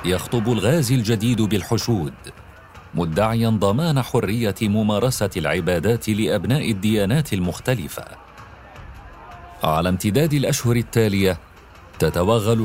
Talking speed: 80 wpm